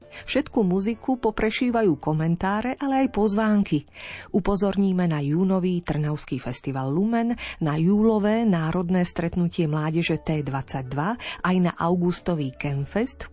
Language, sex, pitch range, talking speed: Slovak, female, 155-220 Hz, 110 wpm